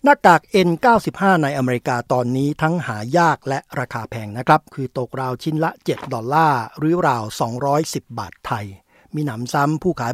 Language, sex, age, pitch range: Thai, male, 60-79, 130-175 Hz